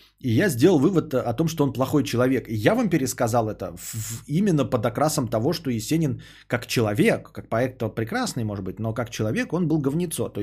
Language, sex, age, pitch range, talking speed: Bulgarian, male, 20-39, 110-145 Hz, 215 wpm